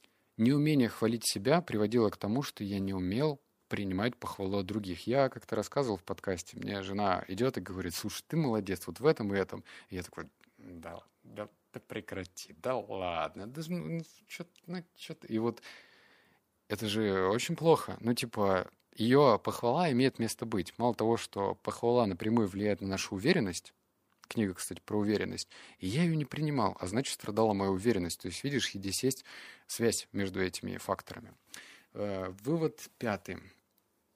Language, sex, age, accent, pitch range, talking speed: Russian, male, 20-39, native, 95-130 Hz, 165 wpm